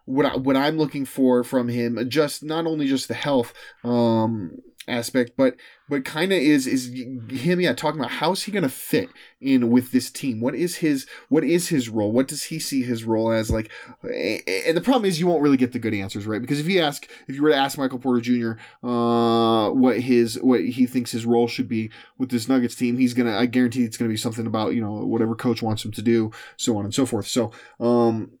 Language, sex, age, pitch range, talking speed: English, male, 20-39, 115-135 Hz, 235 wpm